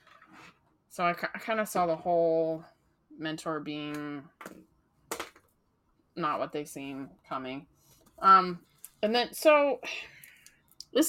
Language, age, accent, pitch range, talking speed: English, 20-39, American, 180-280 Hz, 110 wpm